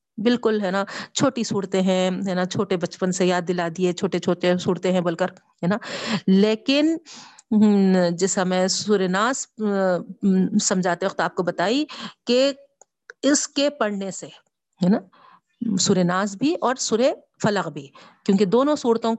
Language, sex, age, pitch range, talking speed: Urdu, female, 50-69, 185-240 Hz, 140 wpm